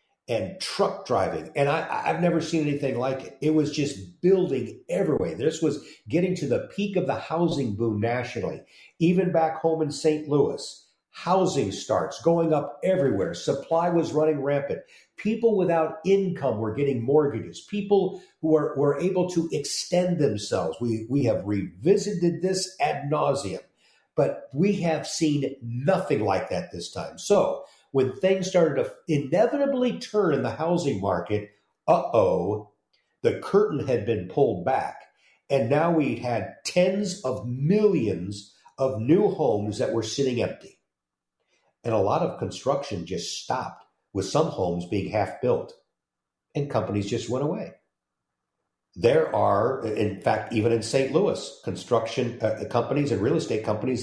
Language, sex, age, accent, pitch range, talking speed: English, male, 50-69, American, 115-175 Hz, 155 wpm